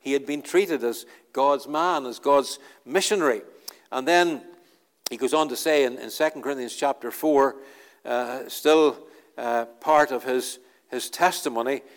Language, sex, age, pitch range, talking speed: English, male, 60-79, 130-190 Hz, 155 wpm